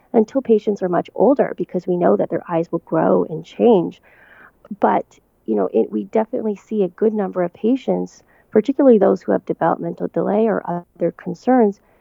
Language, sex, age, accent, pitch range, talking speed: English, female, 30-49, American, 165-225 Hz, 175 wpm